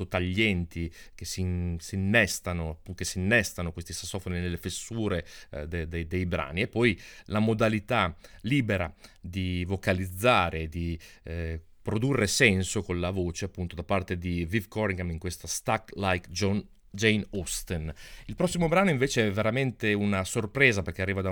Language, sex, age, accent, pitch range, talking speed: Italian, male, 30-49, native, 90-110 Hz, 160 wpm